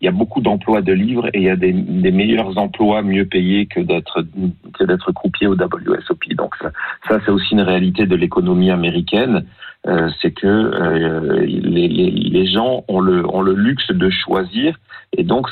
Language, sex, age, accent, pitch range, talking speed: French, male, 40-59, French, 90-115 Hz, 195 wpm